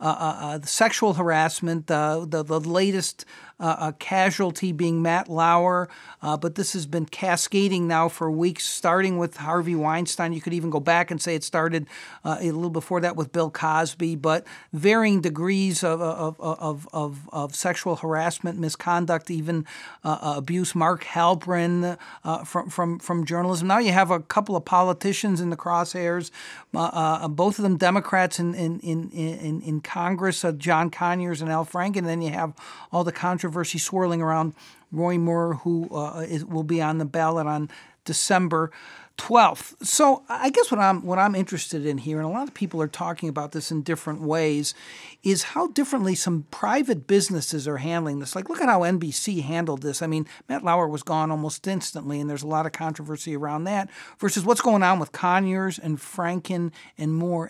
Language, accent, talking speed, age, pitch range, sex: English, American, 185 wpm, 50-69, 155-180 Hz, male